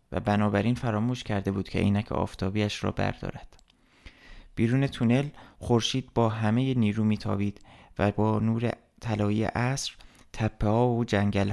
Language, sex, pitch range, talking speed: Persian, male, 100-120 Hz, 135 wpm